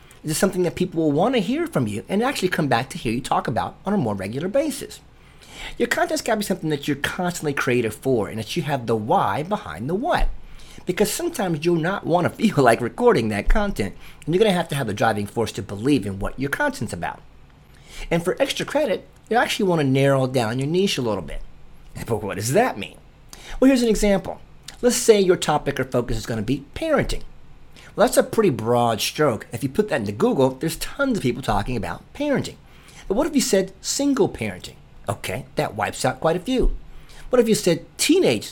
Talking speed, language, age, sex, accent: 225 wpm, English, 30-49, male, American